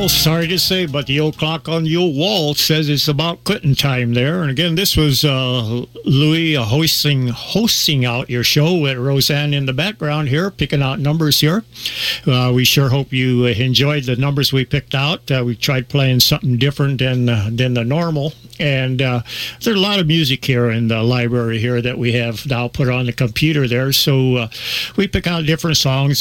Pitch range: 125-155 Hz